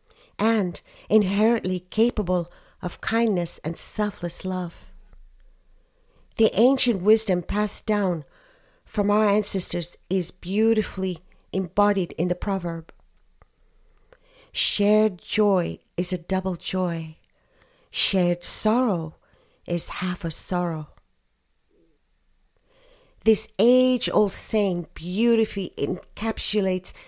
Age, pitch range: 50-69, 180-215 Hz